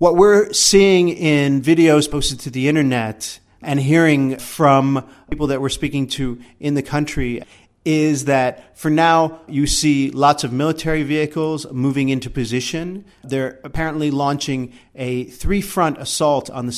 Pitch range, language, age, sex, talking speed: 130-155 Hz, English, 40-59, male, 145 wpm